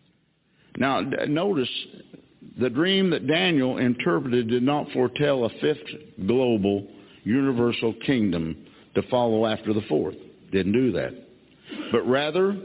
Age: 60-79